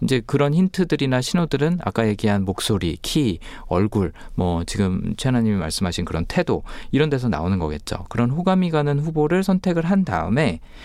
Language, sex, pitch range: Korean, male, 100-150 Hz